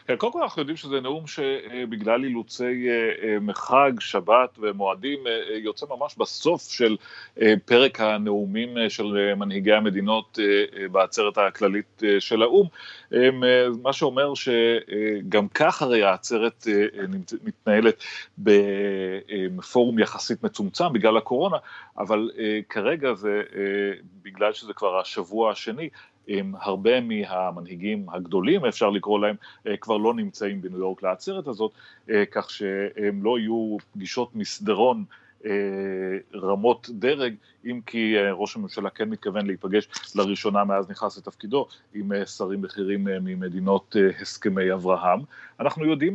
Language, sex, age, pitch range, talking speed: Hebrew, male, 40-59, 100-120 Hz, 110 wpm